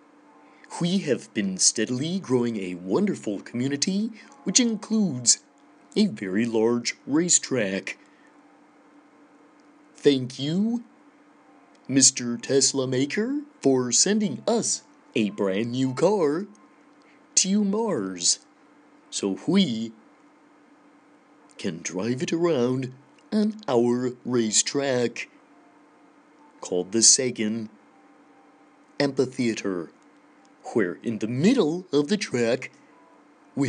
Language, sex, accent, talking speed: English, male, American, 85 wpm